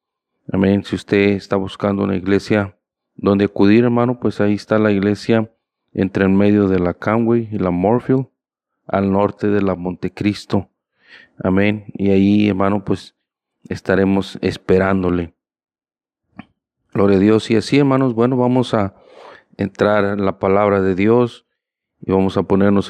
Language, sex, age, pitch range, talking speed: Spanish, male, 40-59, 95-110 Hz, 145 wpm